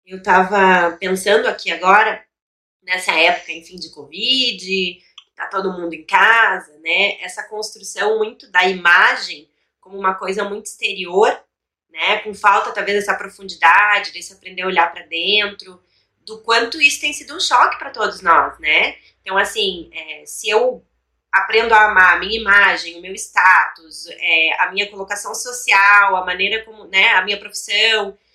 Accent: Brazilian